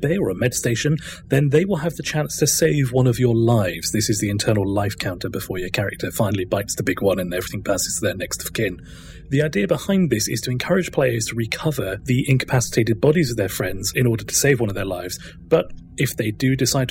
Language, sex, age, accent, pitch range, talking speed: English, male, 30-49, British, 110-140 Hz, 240 wpm